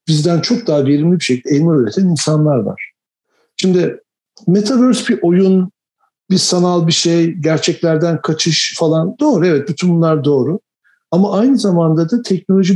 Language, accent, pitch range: English, Turkish, 150-205 Hz